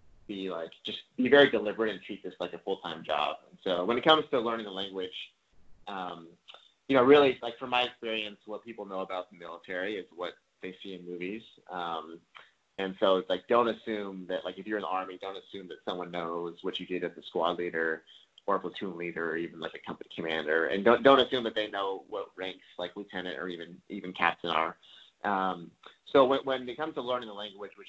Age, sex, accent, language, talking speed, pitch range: 30-49, male, American, English, 225 wpm, 90-110 Hz